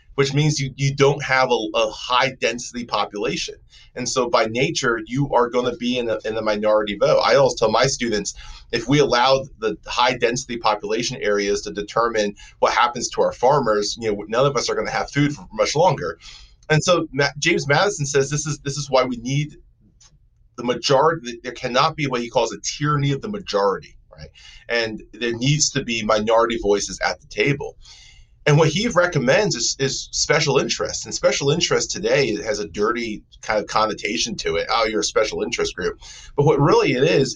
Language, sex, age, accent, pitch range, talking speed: English, male, 30-49, American, 110-145 Hz, 205 wpm